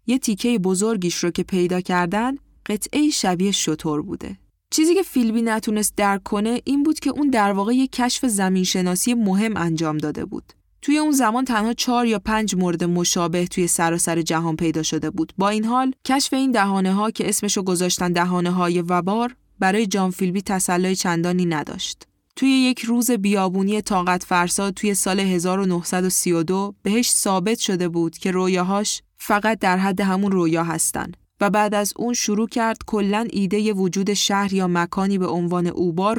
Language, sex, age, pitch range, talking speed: Persian, female, 10-29, 180-225 Hz, 170 wpm